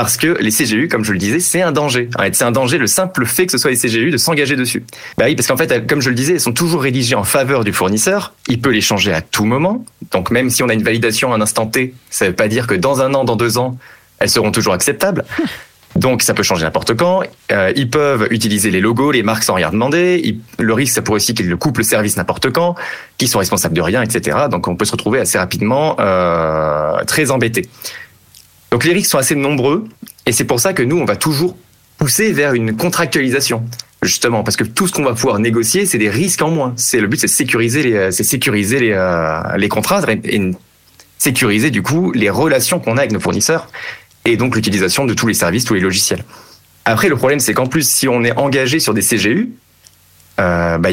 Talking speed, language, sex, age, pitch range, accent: 240 wpm, French, male, 30-49, 110-145 Hz, French